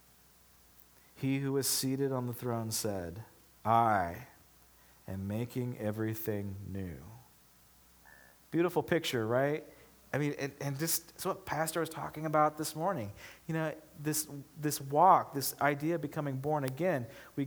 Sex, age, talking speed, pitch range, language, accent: male, 40-59, 140 wpm, 105-145 Hz, English, American